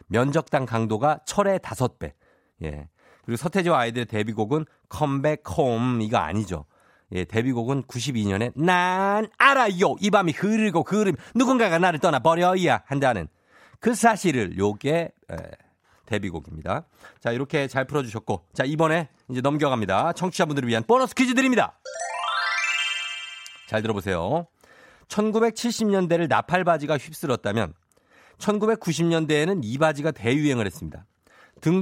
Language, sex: Korean, male